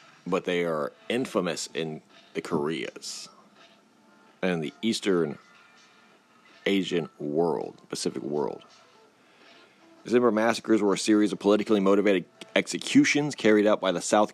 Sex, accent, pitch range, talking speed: male, American, 95-110 Hz, 120 wpm